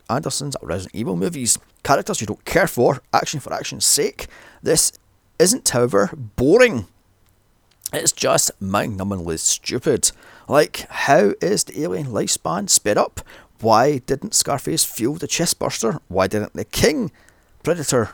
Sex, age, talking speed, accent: male, 30-49, 130 wpm, British